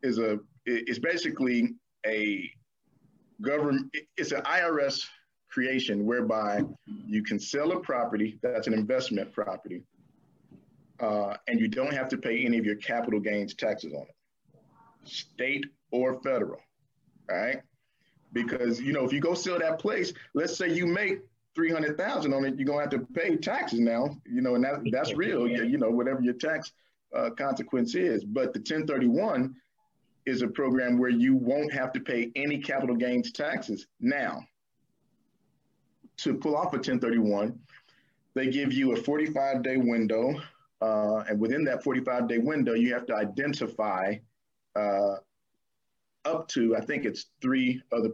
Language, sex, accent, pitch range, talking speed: English, male, American, 115-145 Hz, 155 wpm